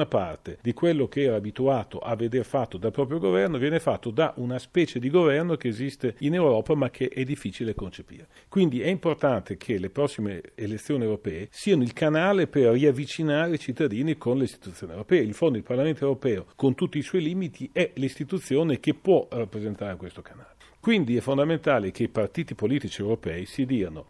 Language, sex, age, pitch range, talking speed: Italian, male, 50-69, 115-155 Hz, 185 wpm